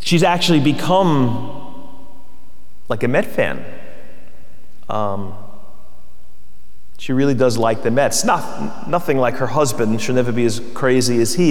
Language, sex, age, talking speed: English, male, 30-49, 135 wpm